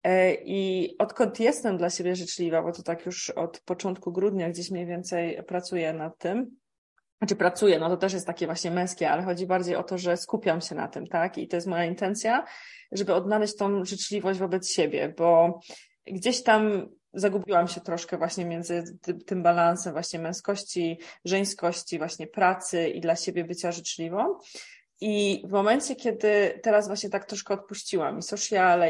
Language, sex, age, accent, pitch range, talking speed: Polish, female, 20-39, native, 175-205 Hz, 170 wpm